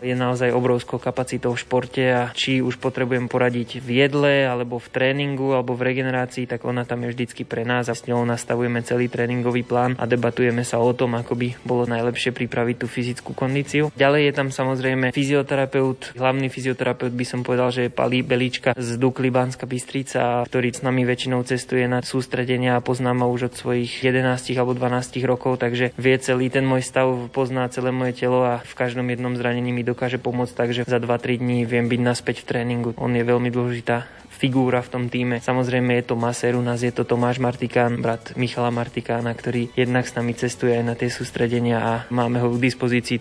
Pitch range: 120-130 Hz